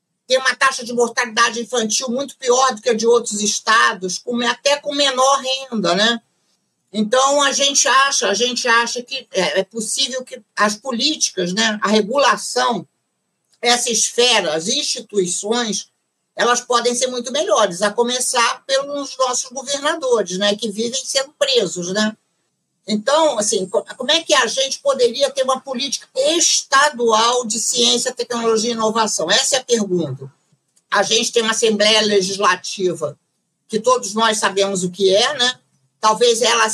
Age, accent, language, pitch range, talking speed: 50-69, Brazilian, Portuguese, 210-265 Hz, 145 wpm